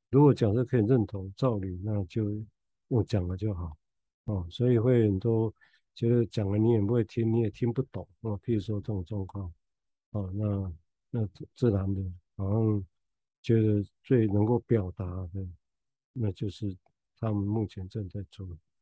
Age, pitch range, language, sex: 50-69, 95-115 Hz, Chinese, male